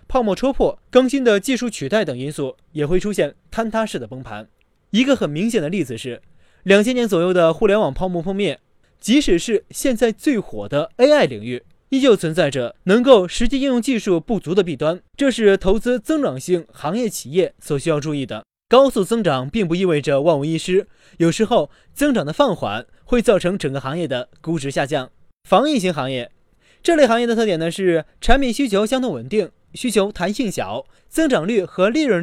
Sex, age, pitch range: male, 20-39, 160-240 Hz